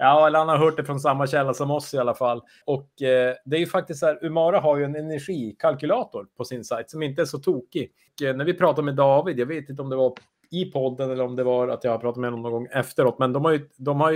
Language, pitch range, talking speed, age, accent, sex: Swedish, 125-150 Hz, 295 wpm, 30-49, Norwegian, male